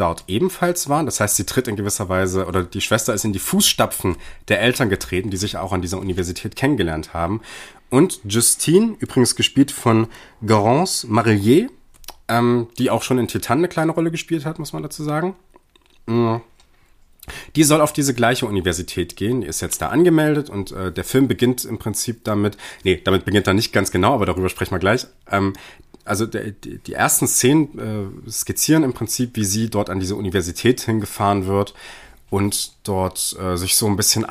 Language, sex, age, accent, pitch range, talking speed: German, male, 30-49, German, 95-135 Hz, 185 wpm